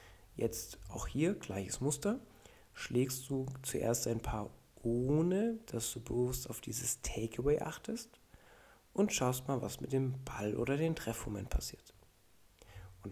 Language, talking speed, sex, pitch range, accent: German, 135 wpm, male, 110-140 Hz, German